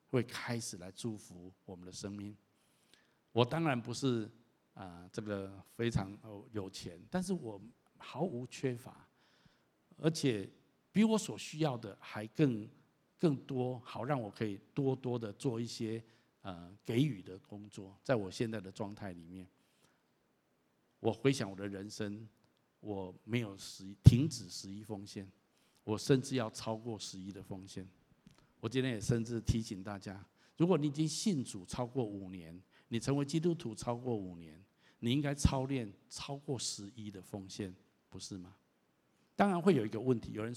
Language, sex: Chinese, male